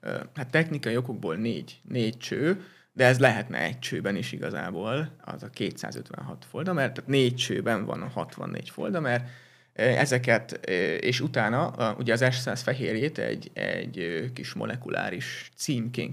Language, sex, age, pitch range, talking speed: Hungarian, male, 30-49, 120-145 Hz, 140 wpm